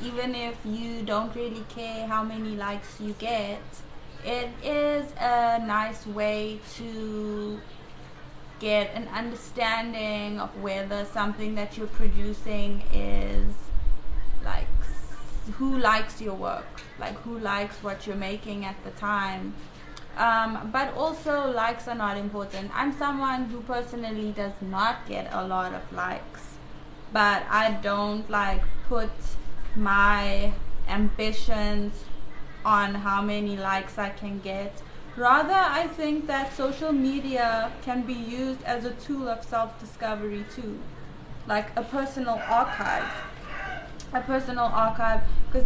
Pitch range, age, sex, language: 205-240 Hz, 20-39, female, Thai